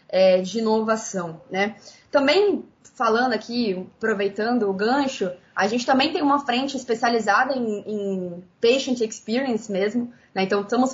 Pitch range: 215-260 Hz